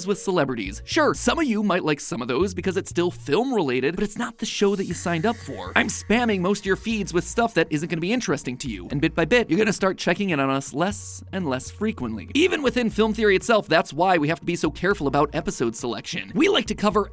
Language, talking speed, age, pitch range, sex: English, 275 wpm, 30-49, 155-215 Hz, male